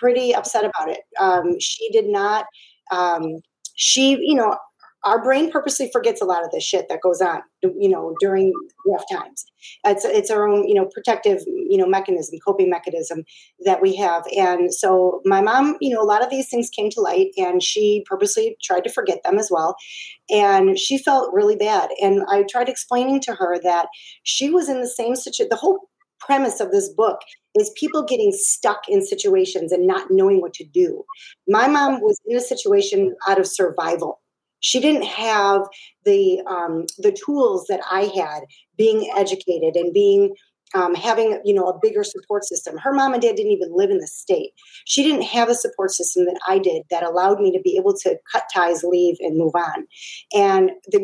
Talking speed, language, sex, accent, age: 195 wpm, English, female, American, 30-49